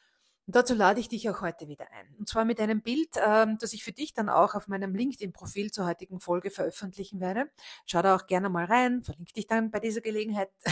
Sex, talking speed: female, 220 wpm